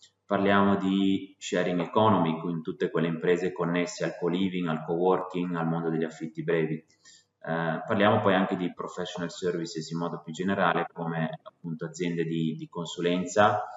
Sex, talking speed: male, 150 wpm